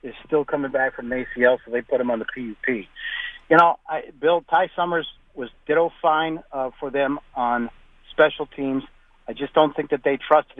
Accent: American